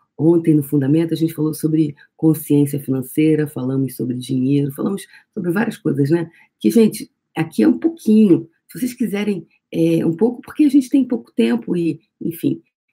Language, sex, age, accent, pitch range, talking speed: Portuguese, female, 40-59, Brazilian, 150-190 Hz, 170 wpm